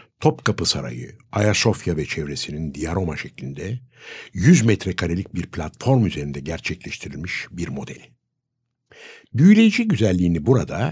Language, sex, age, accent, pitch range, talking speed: Turkish, male, 60-79, native, 80-120 Hz, 100 wpm